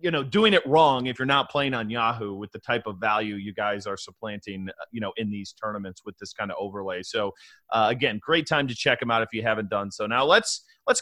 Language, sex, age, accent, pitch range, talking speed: English, male, 30-49, American, 115-155 Hz, 255 wpm